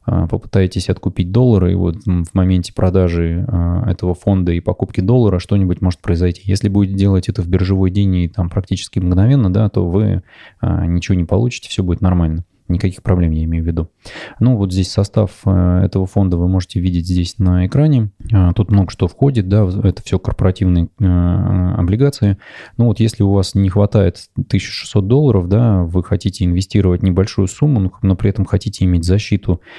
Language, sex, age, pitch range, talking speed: Russian, male, 20-39, 90-105 Hz, 170 wpm